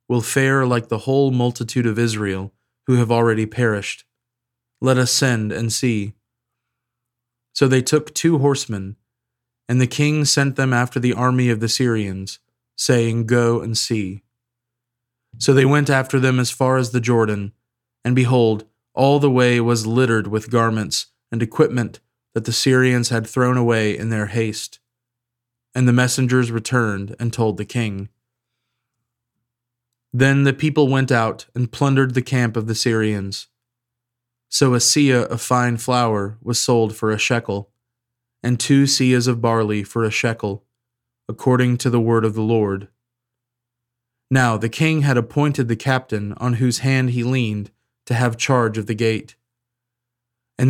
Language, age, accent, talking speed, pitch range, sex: English, 20-39, American, 155 wpm, 115-125 Hz, male